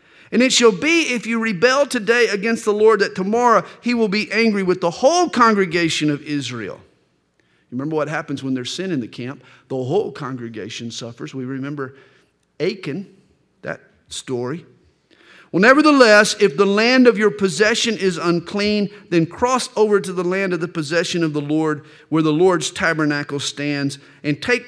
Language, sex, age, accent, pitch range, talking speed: English, male, 50-69, American, 140-190 Hz, 170 wpm